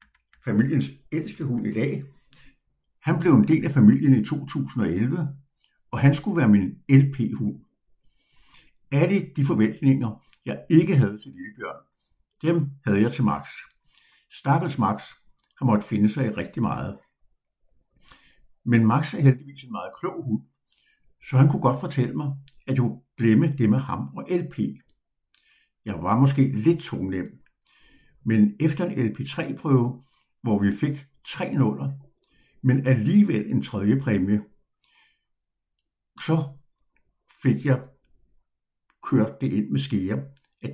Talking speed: 135 wpm